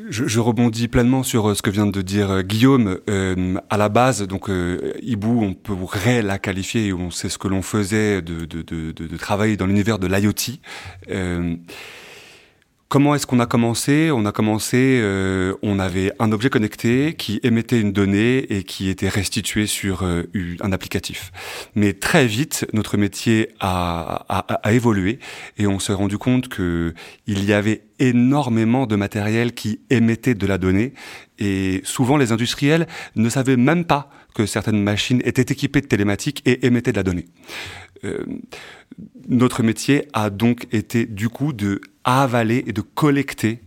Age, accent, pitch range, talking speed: 30-49, French, 100-125 Hz, 170 wpm